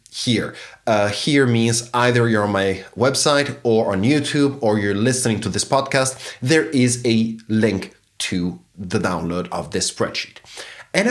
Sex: male